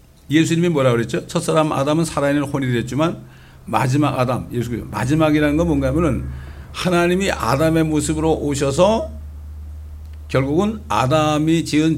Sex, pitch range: male, 120-165 Hz